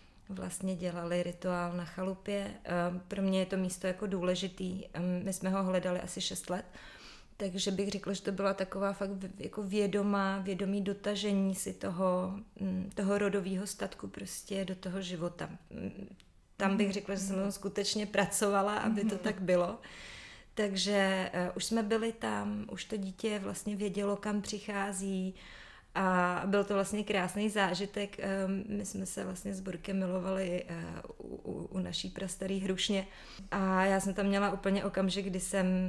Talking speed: 150 wpm